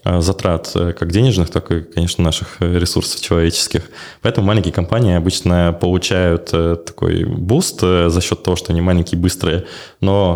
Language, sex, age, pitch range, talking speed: Russian, male, 20-39, 85-105 Hz, 140 wpm